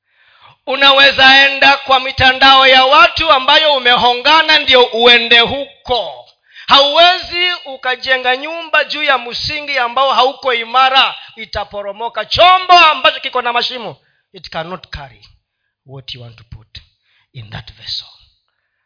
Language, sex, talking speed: Swahili, male, 120 wpm